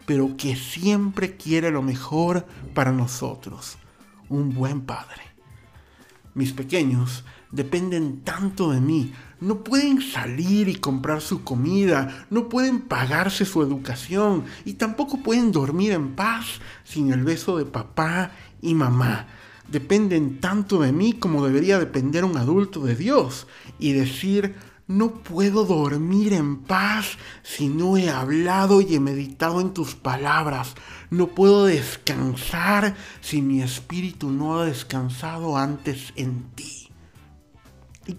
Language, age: Spanish, 50-69